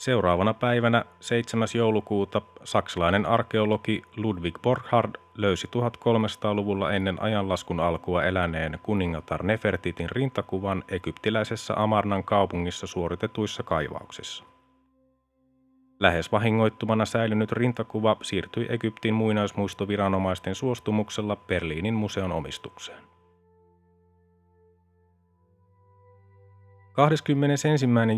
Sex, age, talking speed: male, 30-49, 70 wpm